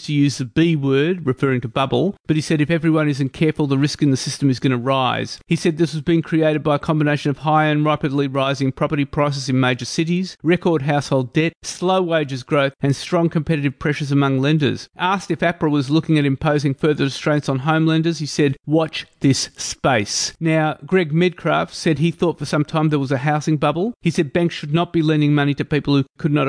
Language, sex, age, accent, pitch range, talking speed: English, male, 30-49, Australian, 140-165 Hz, 220 wpm